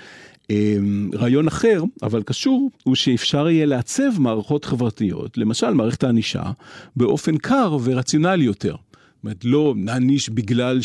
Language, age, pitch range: Hebrew, 50-69, 110-150 Hz